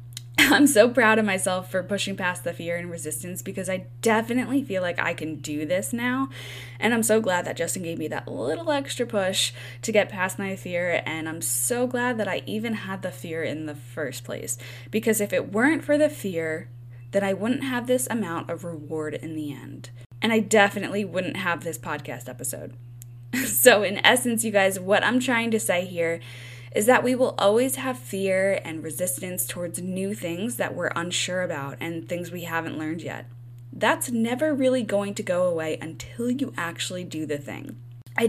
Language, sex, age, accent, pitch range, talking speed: English, female, 10-29, American, 145-220 Hz, 195 wpm